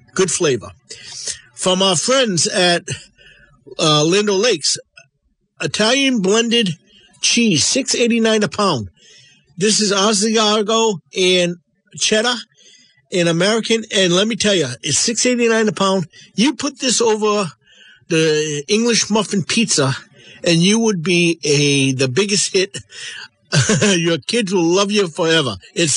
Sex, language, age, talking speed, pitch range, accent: male, English, 50-69, 125 wpm, 155-215 Hz, American